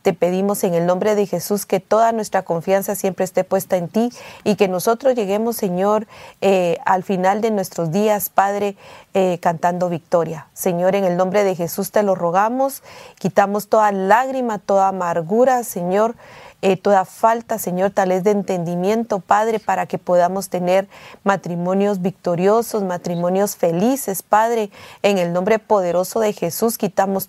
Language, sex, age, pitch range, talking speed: English, female, 40-59, 180-215 Hz, 155 wpm